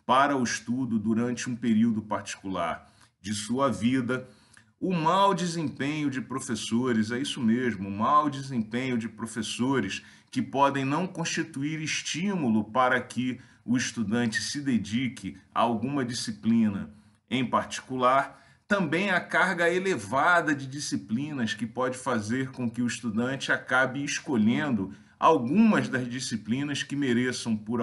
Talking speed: 130 wpm